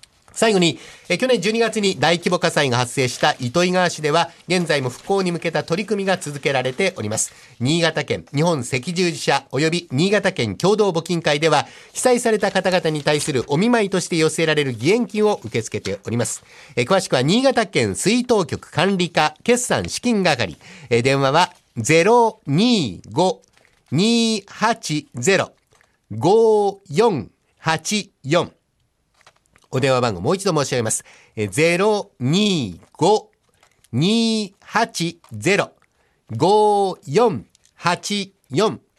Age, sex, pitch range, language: 50-69, male, 140-205 Hz, Japanese